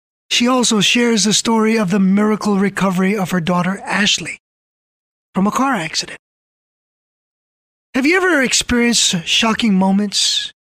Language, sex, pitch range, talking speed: English, male, 185-240 Hz, 130 wpm